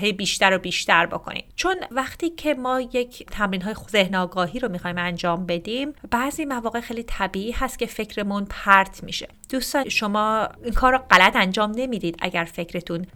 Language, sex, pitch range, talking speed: Persian, female, 185-245 Hz, 155 wpm